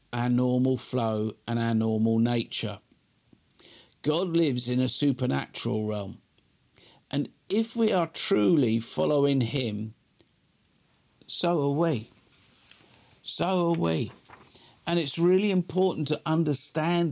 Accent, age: British, 50-69